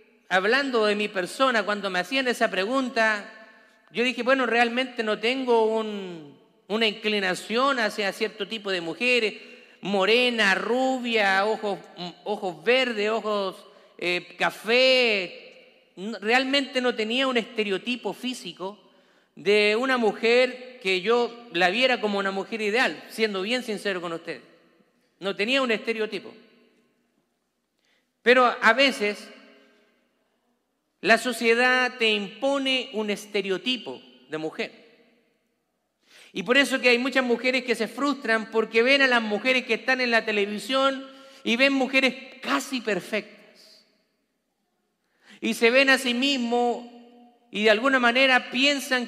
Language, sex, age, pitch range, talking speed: Spanish, male, 40-59, 205-250 Hz, 125 wpm